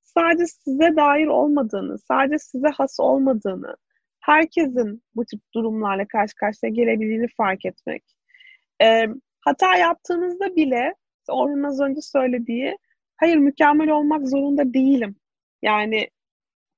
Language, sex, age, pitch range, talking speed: Turkish, female, 30-49, 225-320 Hz, 110 wpm